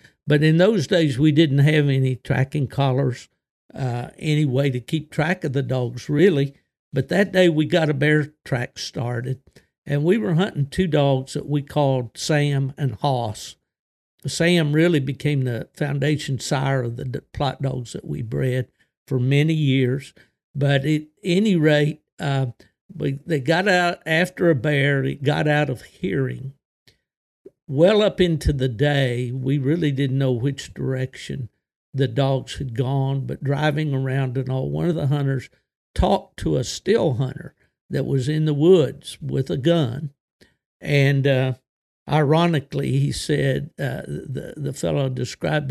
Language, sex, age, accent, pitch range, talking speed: English, male, 60-79, American, 135-155 Hz, 160 wpm